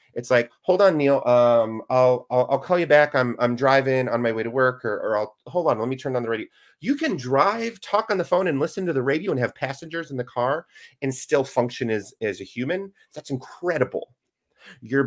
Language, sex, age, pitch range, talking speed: English, male, 30-49, 120-165 Hz, 235 wpm